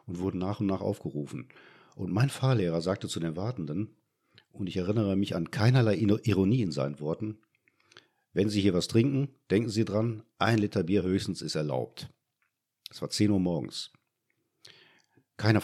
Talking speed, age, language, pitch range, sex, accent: 170 wpm, 50-69, German, 85-110 Hz, male, German